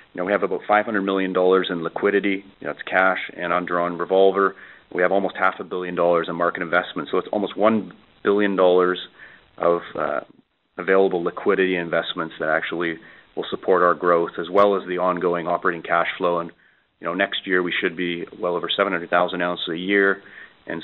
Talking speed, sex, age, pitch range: 190 wpm, male, 30-49, 85-95 Hz